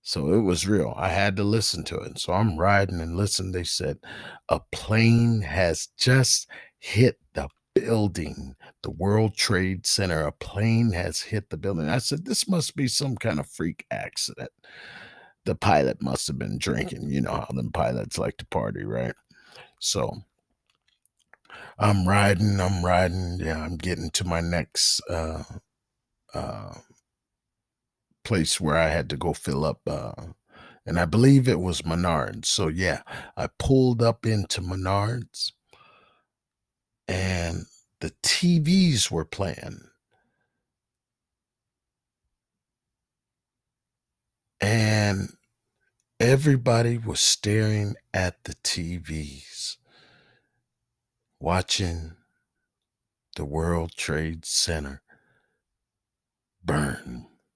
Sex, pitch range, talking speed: male, 85-115 Hz, 115 wpm